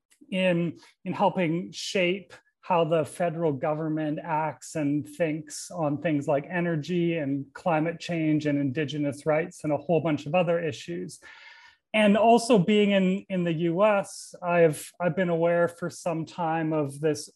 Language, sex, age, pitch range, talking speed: English, male, 30-49, 150-180 Hz, 150 wpm